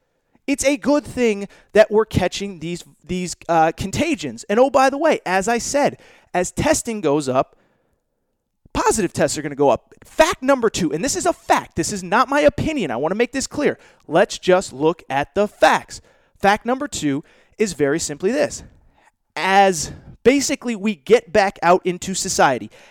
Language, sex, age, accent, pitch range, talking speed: English, male, 30-49, American, 190-265 Hz, 185 wpm